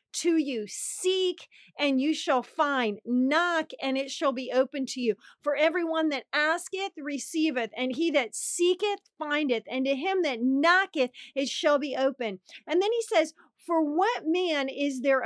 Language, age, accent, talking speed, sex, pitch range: English, 40-59, American, 170 wpm, female, 245-310 Hz